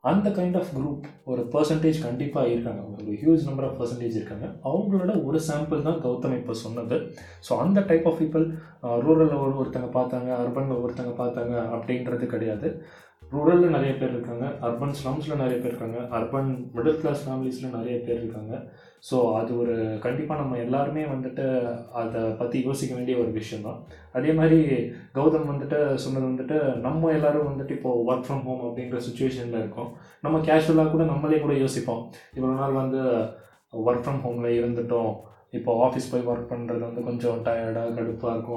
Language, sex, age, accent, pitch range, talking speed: Tamil, male, 20-39, native, 120-150 Hz, 160 wpm